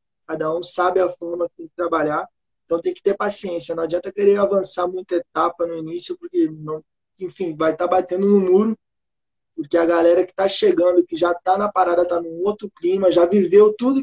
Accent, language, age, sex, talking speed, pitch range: Brazilian, Portuguese, 20-39, male, 210 wpm, 175-210 Hz